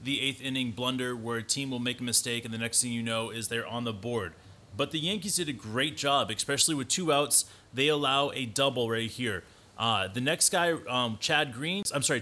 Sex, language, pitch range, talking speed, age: male, English, 115-150 Hz, 235 wpm, 30-49